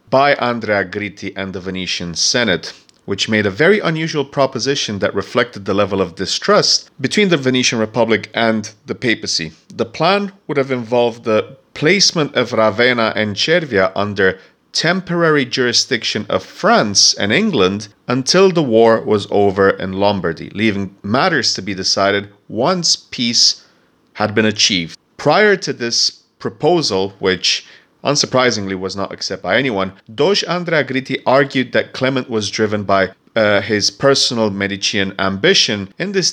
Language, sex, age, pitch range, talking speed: English, male, 30-49, 100-135 Hz, 145 wpm